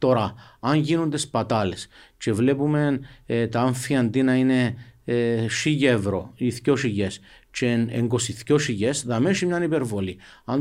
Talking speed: 130 wpm